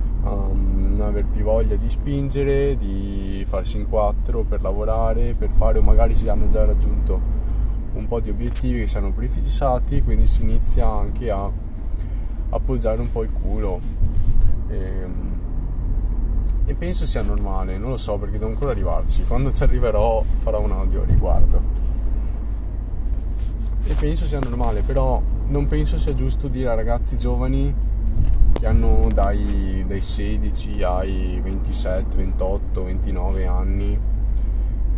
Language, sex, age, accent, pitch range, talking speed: Italian, male, 20-39, native, 90-110 Hz, 140 wpm